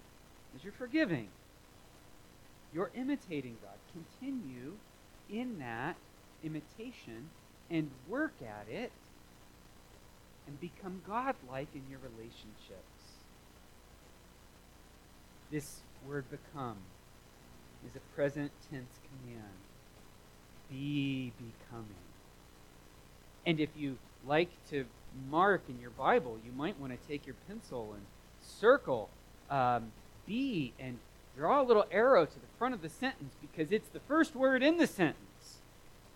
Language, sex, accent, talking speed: English, male, American, 115 wpm